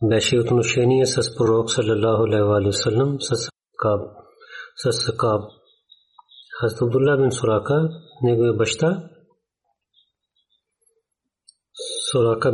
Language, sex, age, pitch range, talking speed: Bulgarian, male, 40-59, 115-160 Hz, 100 wpm